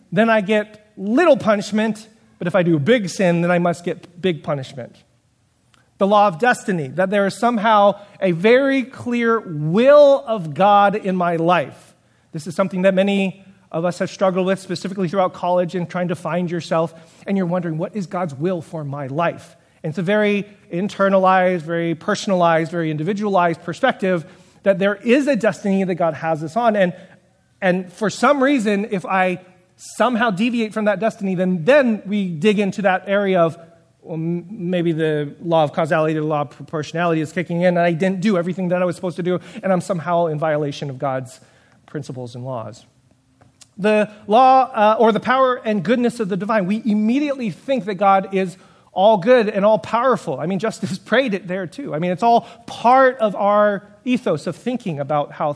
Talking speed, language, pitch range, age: 190 wpm, English, 170-215 Hz, 30-49